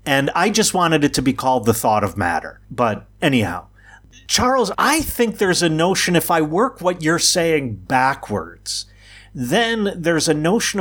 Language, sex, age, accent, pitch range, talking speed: English, male, 50-69, American, 105-160 Hz, 170 wpm